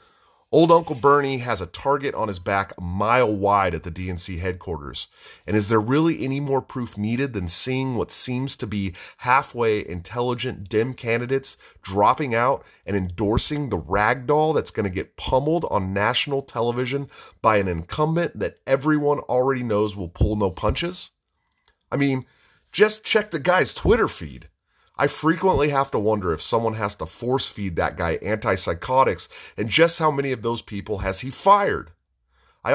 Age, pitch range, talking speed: 30-49, 100-140 Hz, 165 wpm